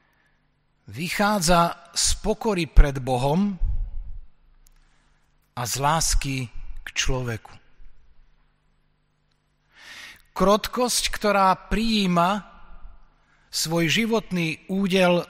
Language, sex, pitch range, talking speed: Slovak, male, 155-200 Hz, 65 wpm